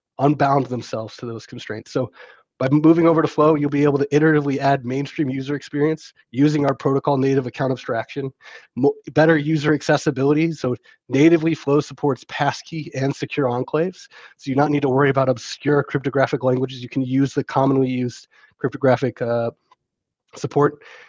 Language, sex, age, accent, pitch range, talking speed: English, male, 20-39, American, 130-155 Hz, 160 wpm